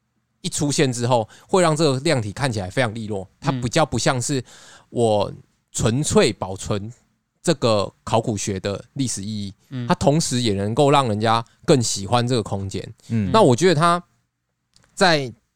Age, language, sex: 20-39, Chinese, male